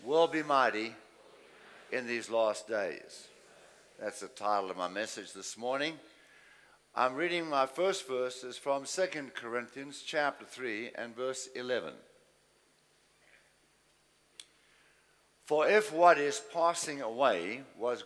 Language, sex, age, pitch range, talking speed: English, male, 60-79, 120-170 Hz, 115 wpm